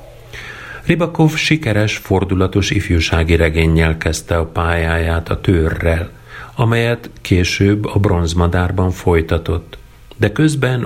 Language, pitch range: Hungarian, 85-110 Hz